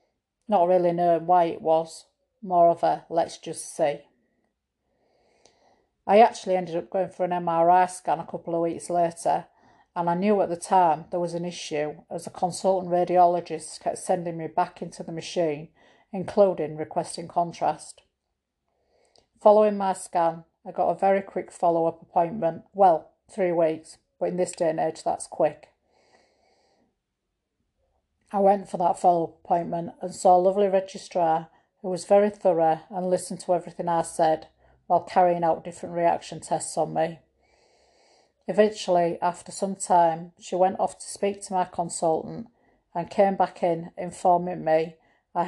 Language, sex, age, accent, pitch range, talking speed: English, female, 40-59, British, 165-185 Hz, 155 wpm